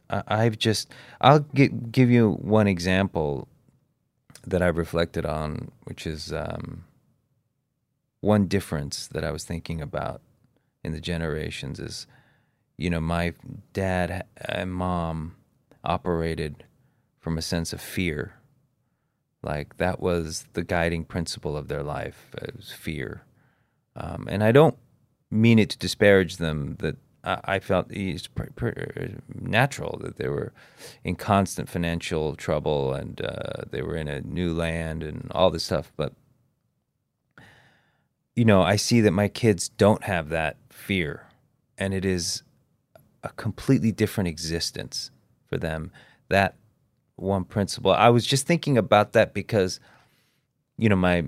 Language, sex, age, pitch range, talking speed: English, male, 30-49, 85-120 Hz, 135 wpm